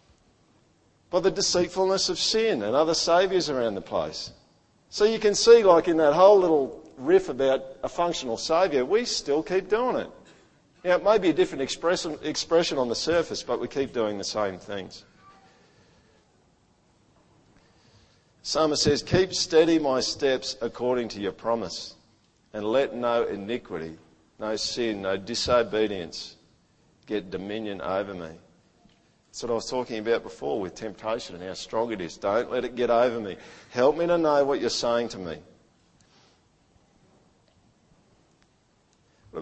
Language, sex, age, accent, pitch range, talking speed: English, male, 50-69, Australian, 105-165 Hz, 150 wpm